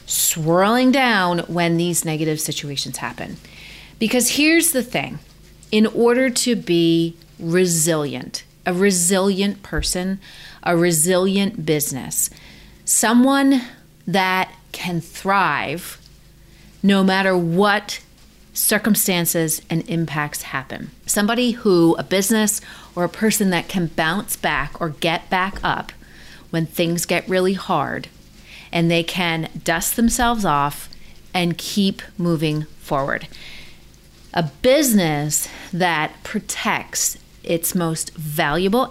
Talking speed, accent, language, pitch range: 110 wpm, American, English, 160-205 Hz